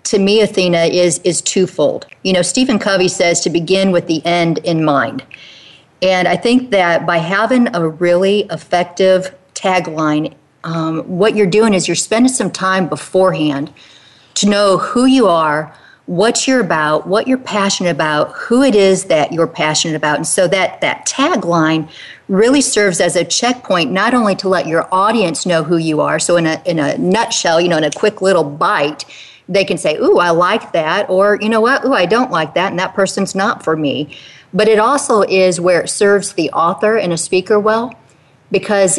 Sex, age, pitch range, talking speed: female, 40-59, 165-205 Hz, 195 wpm